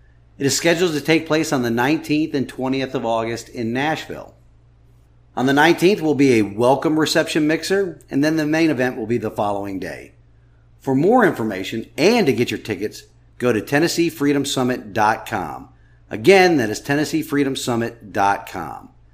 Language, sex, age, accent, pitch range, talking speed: English, male, 40-59, American, 110-150 Hz, 155 wpm